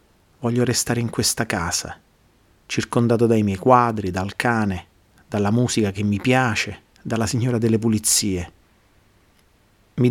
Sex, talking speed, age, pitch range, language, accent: male, 125 wpm, 30-49, 100-120 Hz, Italian, native